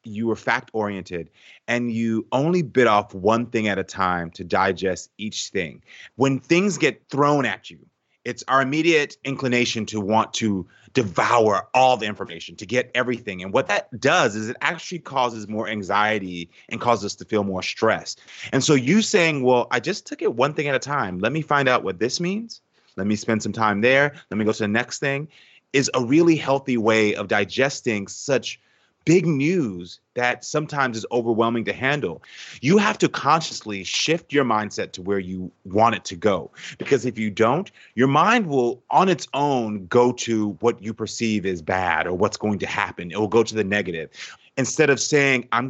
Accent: American